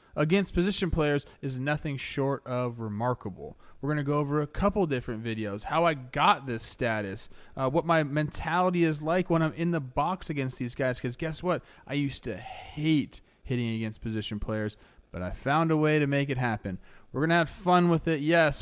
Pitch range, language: 125-165 Hz, English